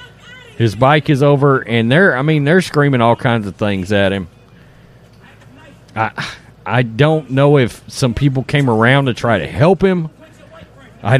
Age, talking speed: 40-59, 165 wpm